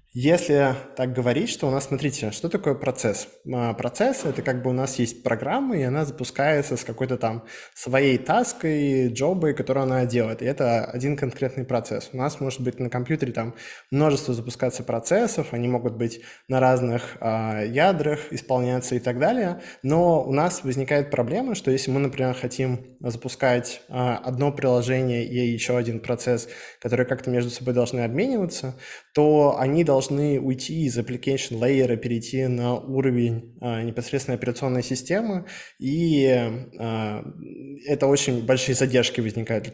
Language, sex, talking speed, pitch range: Russian, male, 150 wpm, 125-140 Hz